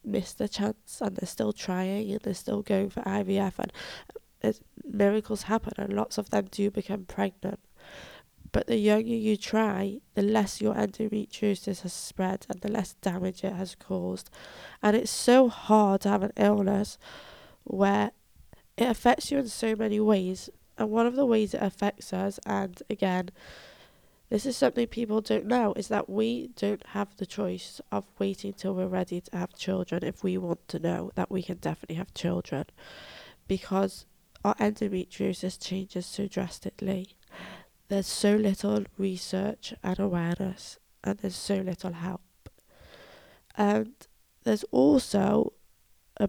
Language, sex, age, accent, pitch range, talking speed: English, female, 20-39, British, 190-215 Hz, 155 wpm